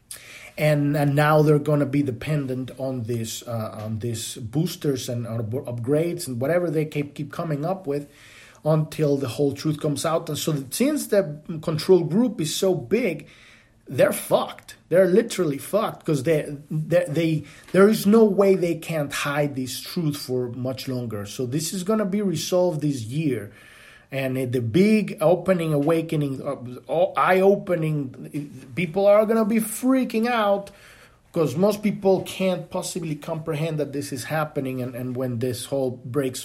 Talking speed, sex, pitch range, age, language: 160 wpm, male, 135-180 Hz, 30-49, English